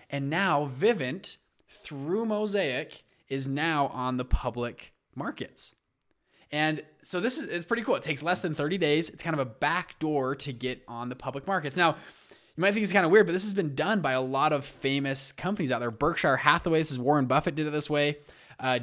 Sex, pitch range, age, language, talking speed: male, 130-160 Hz, 20-39, English, 215 wpm